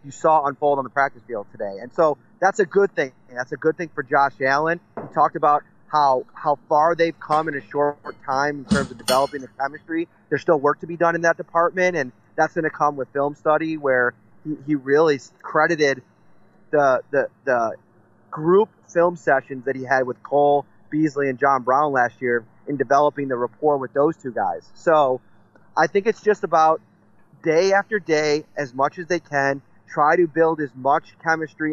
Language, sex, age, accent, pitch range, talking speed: English, male, 30-49, American, 140-175 Hz, 200 wpm